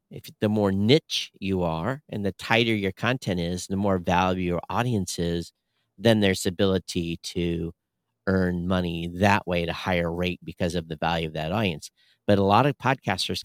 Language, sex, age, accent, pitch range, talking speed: English, male, 50-69, American, 95-120 Hz, 185 wpm